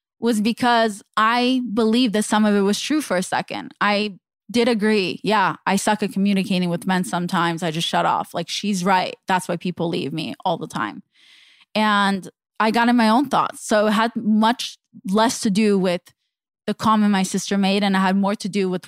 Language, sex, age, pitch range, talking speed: English, female, 20-39, 195-250 Hz, 210 wpm